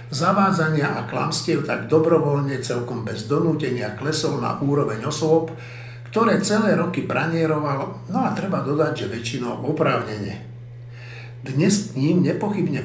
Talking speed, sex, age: 125 wpm, male, 60-79